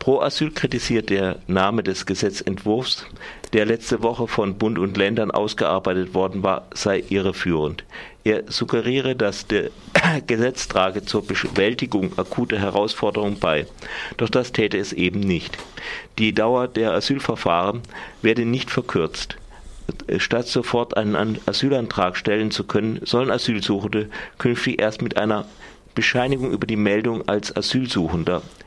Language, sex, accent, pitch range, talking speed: German, male, German, 100-120 Hz, 130 wpm